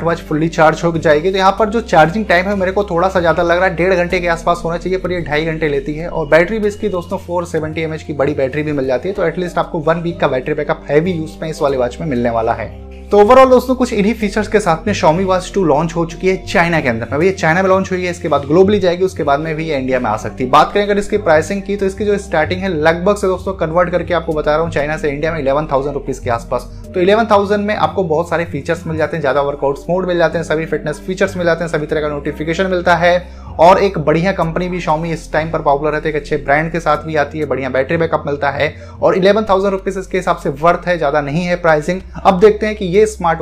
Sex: male